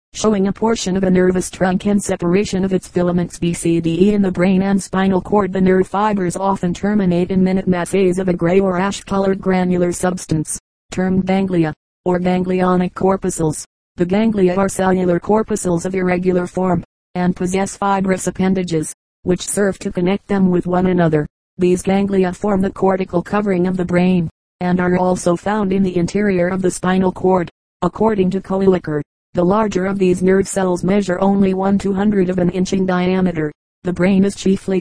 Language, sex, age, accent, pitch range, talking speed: English, female, 40-59, American, 180-195 Hz, 170 wpm